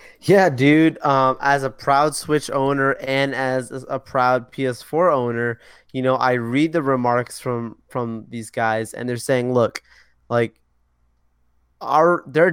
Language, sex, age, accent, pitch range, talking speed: English, male, 20-39, American, 115-140 Hz, 150 wpm